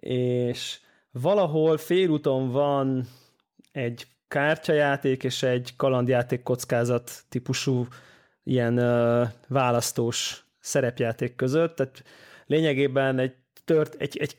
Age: 20-39